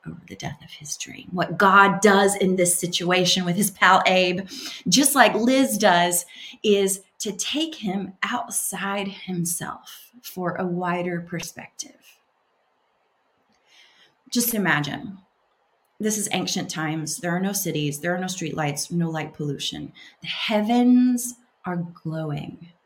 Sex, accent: female, American